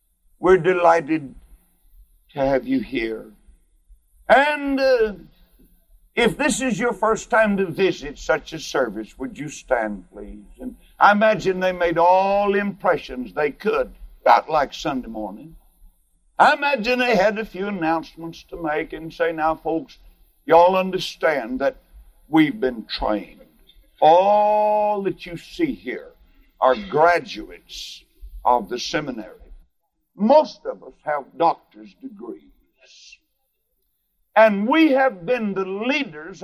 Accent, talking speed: American, 130 wpm